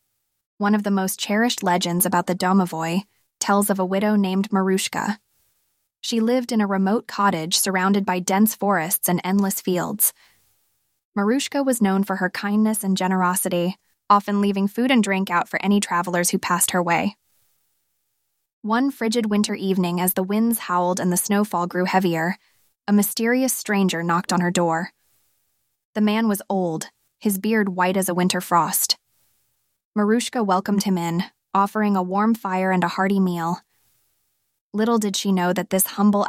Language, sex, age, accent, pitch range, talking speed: English, female, 20-39, American, 180-215 Hz, 165 wpm